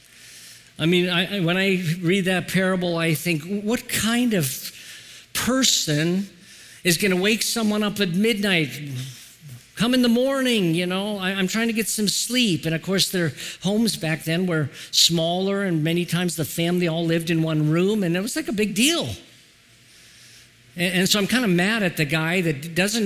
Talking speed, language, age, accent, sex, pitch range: 185 wpm, English, 50-69, American, male, 145-190 Hz